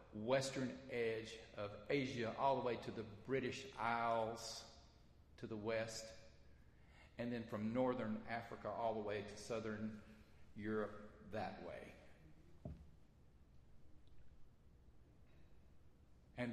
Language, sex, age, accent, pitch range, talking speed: English, male, 50-69, American, 100-125 Hz, 100 wpm